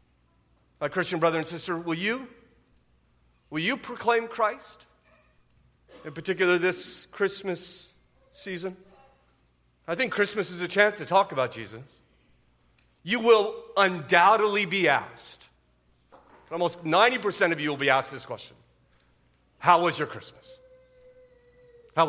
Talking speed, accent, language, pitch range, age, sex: 120 wpm, American, English, 120-190 Hz, 40-59, male